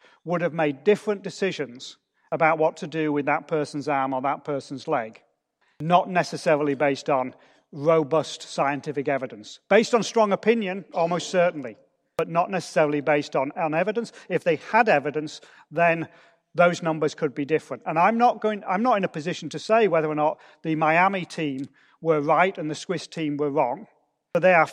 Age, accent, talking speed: 40-59, British, 180 wpm